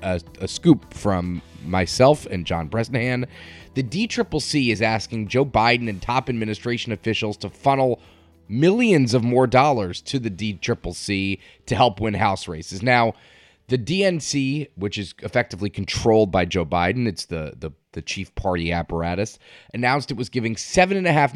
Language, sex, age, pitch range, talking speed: English, male, 30-49, 95-130 Hz, 170 wpm